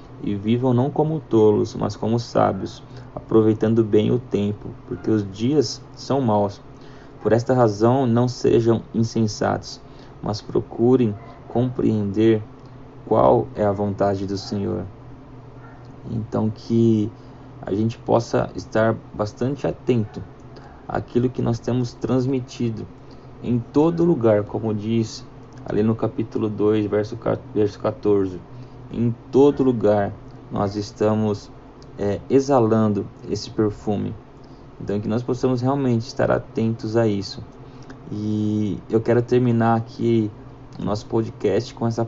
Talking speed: 120 wpm